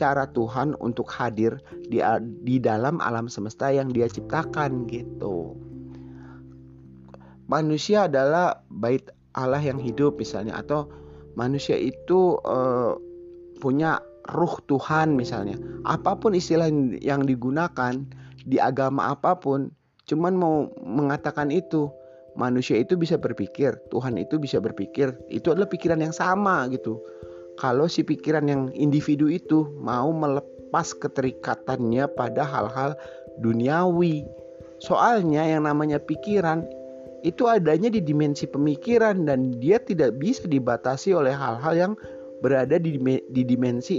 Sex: male